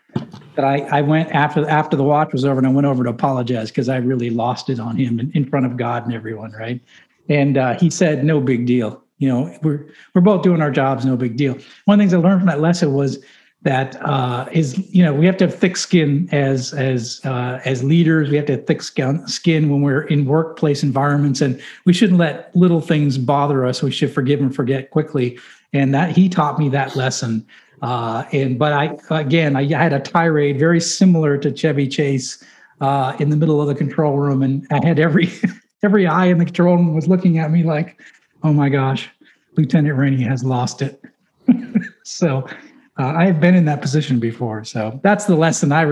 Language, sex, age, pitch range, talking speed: English, male, 50-69, 135-165 Hz, 215 wpm